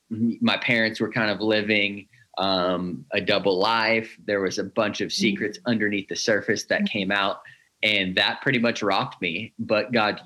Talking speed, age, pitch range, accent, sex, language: 175 wpm, 20-39, 95-115 Hz, American, male, English